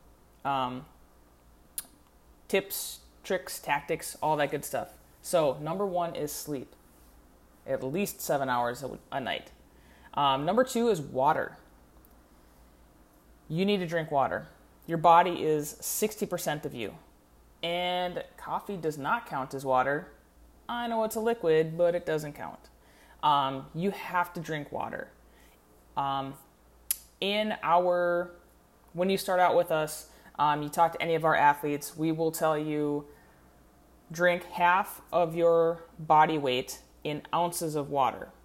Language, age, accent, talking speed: English, 20-39, American, 140 wpm